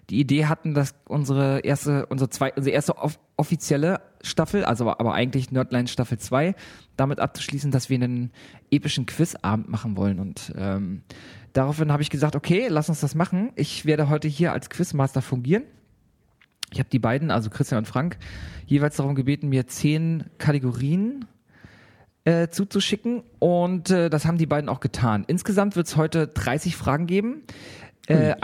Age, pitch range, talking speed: 40-59, 125-160 Hz, 160 wpm